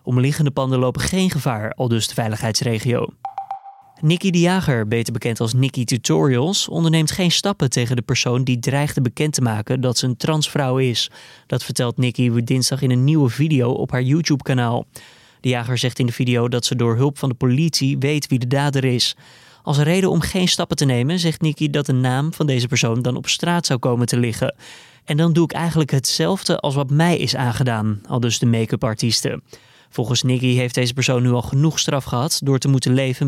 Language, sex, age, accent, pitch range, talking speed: Dutch, male, 20-39, Dutch, 125-155 Hz, 205 wpm